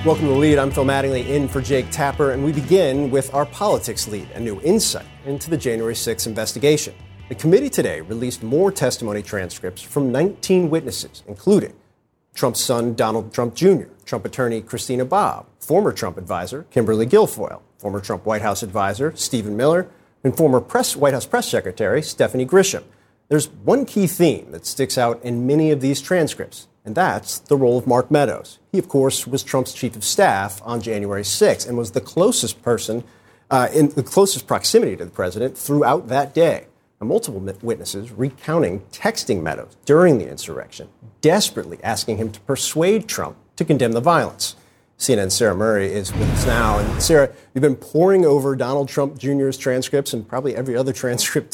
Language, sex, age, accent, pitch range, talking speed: English, male, 40-59, American, 115-145 Hz, 180 wpm